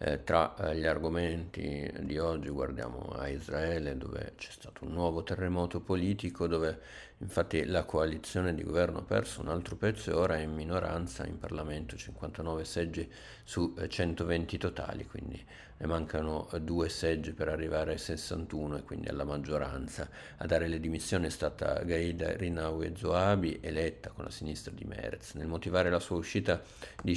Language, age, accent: Italian, 50-69, native